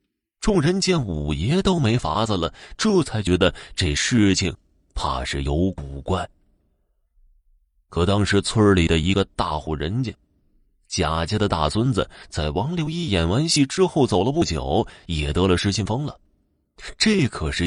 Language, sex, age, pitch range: Chinese, male, 30-49, 80-120 Hz